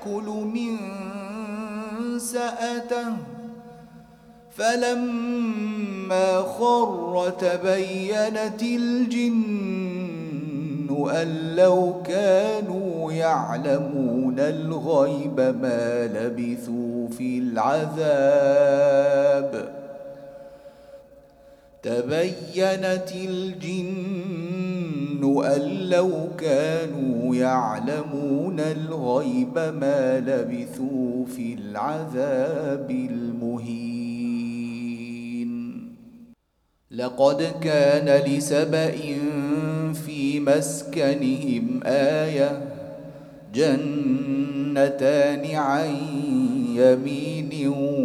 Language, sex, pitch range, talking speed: Arabic, male, 140-215 Hz, 45 wpm